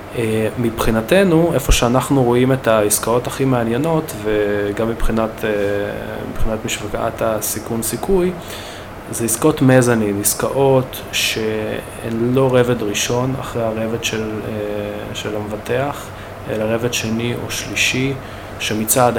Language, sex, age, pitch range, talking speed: Hebrew, male, 20-39, 105-125 Hz, 105 wpm